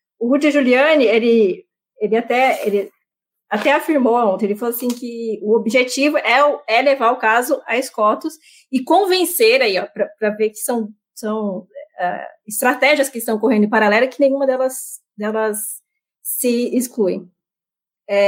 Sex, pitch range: female, 210-270 Hz